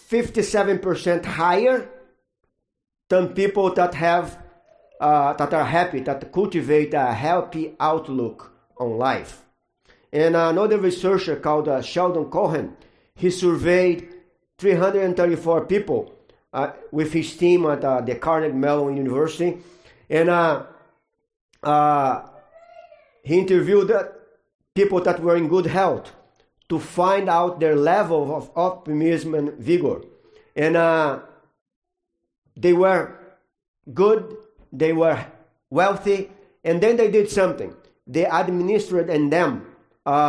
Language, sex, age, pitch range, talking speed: English, male, 50-69, 150-185 Hz, 115 wpm